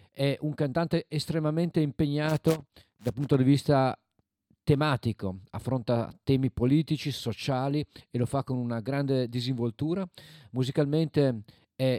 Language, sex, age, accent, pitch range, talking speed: Italian, male, 40-59, native, 110-145 Hz, 115 wpm